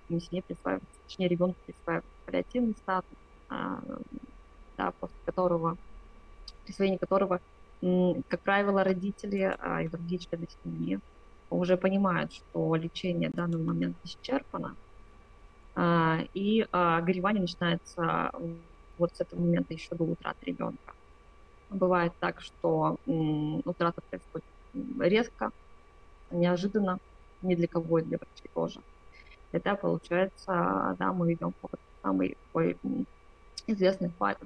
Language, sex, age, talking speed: Russian, female, 20-39, 100 wpm